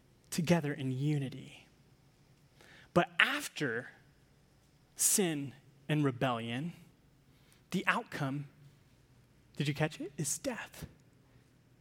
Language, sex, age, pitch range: English, male, 30-49, 140-185 Hz